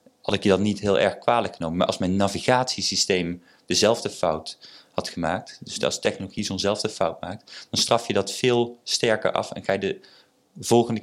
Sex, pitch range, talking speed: male, 95-115 Hz, 190 wpm